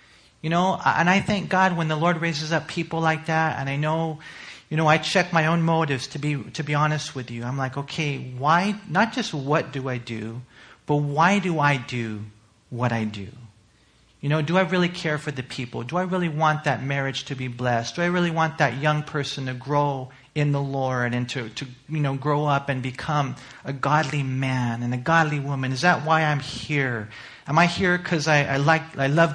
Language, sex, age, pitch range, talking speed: English, male, 40-59, 130-175 Hz, 225 wpm